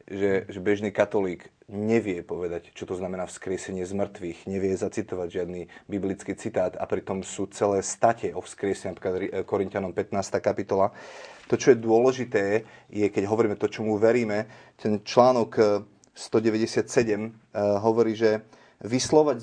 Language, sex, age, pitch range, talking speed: Slovak, male, 30-49, 105-125 Hz, 130 wpm